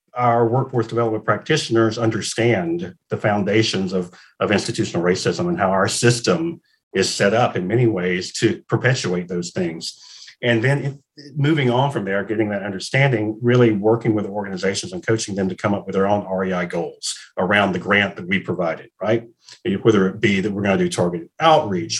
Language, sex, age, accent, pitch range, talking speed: English, male, 50-69, American, 100-120 Hz, 175 wpm